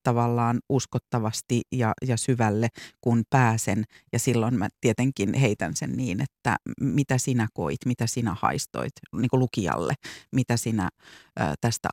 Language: Finnish